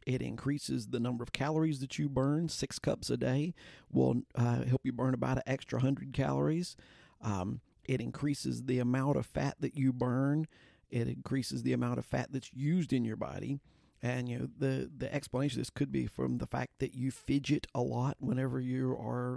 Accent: American